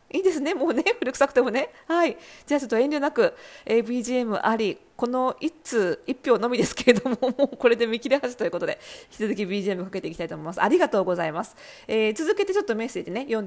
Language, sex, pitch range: Japanese, female, 215-340 Hz